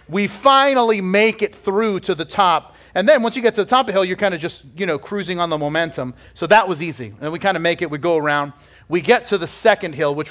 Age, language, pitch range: 40-59, English, 150-195 Hz